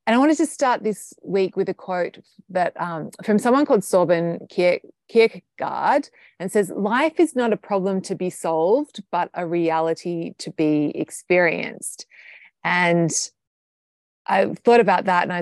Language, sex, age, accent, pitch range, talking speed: English, female, 30-49, Australian, 170-230 Hz, 160 wpm